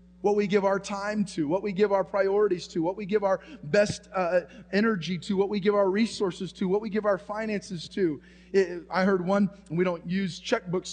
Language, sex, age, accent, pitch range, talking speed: English, male, 30-49, American, 160-190 Hz, 220 wpm